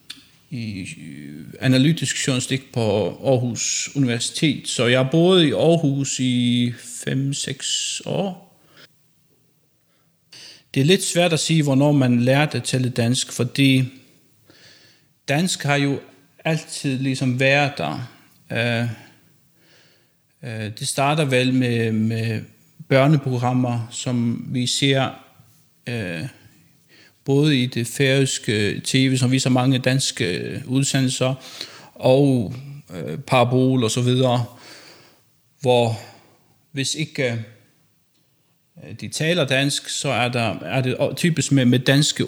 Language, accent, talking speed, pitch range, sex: English, Danish, 110 wpm, 125-150 Hz, male